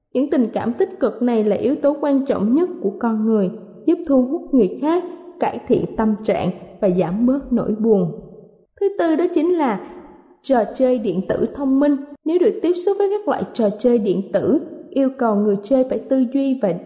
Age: 20-39